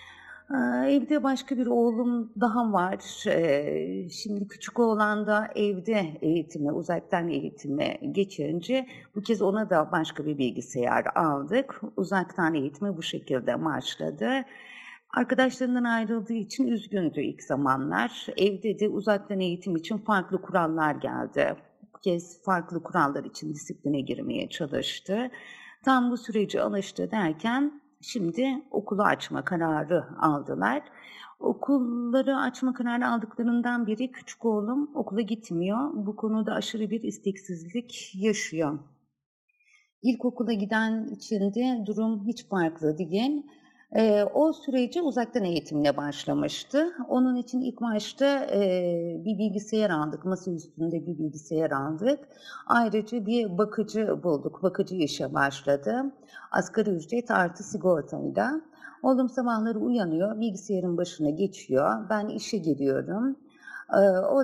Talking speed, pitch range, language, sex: 115 wpm, 175-245 Hz, Turkish, female